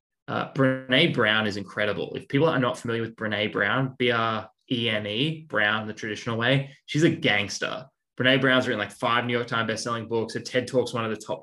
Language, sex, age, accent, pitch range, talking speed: English, male, 10-29, Australian, 110-135 Hz, 200 wpm